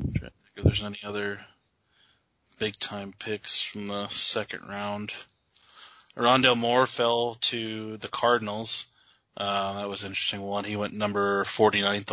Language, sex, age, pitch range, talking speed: English, male, 20-39, 100-120 Hz, 140 wpm